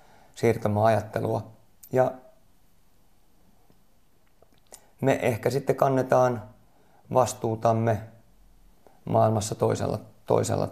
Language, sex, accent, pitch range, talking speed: Finnish, male, native, 105-120 Hz, 60 wpm